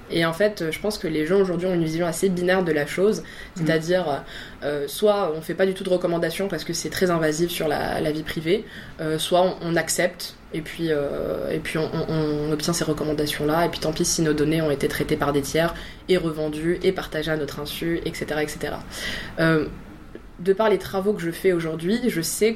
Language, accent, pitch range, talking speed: French, French, 155-185 Hz, 225 wpm